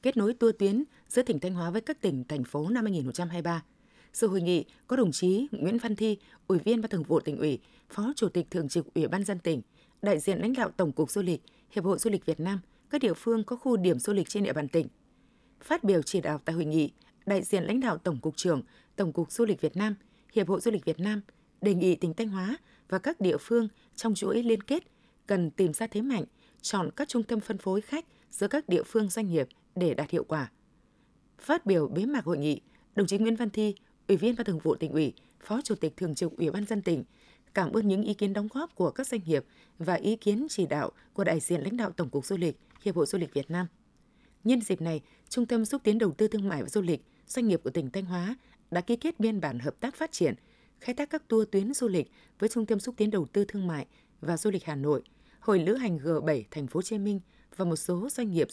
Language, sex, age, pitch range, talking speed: Vietnamese, female, 20-39, 170-230 Hz, 255 wpm